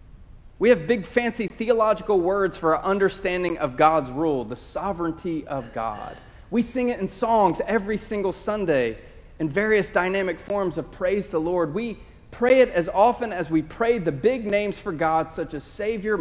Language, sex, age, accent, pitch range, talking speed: English, male, 30-49, American, 135-195 Hz, 180 wpm